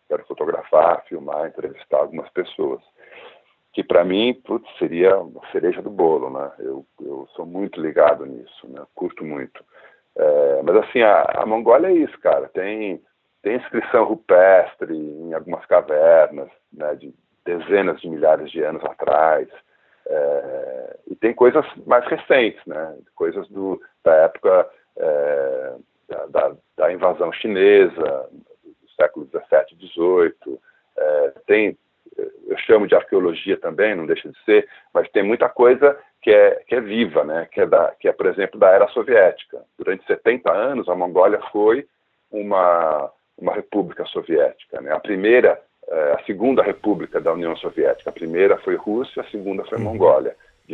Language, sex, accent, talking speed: Portuguese, male, Brazilian, 150 wpm